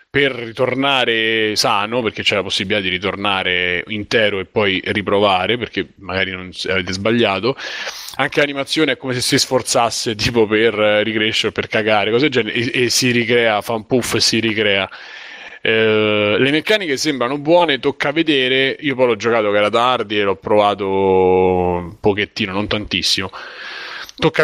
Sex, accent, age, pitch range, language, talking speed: male, native, 20-39, 100-125 Hz, Italian, 160 wpm